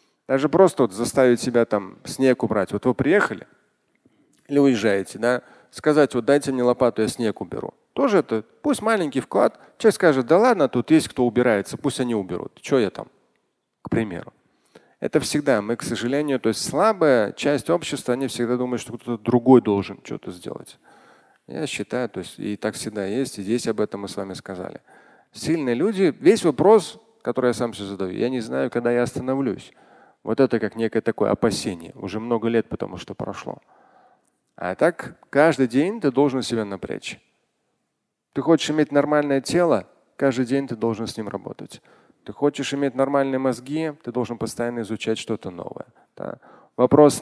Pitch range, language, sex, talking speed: 115-140 Hz, Russian, male, 175 wpm